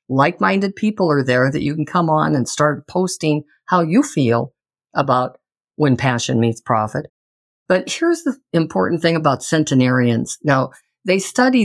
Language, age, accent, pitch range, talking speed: English, 50-69, American, 140-185 Hz, 155 wpm